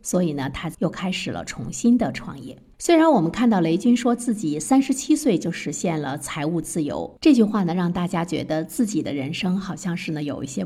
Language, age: Chinese, 50-69